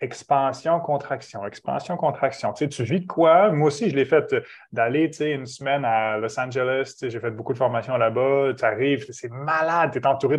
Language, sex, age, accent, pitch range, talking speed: French, male, 30-49, Canadian, 125-155 Hz, 200 wpm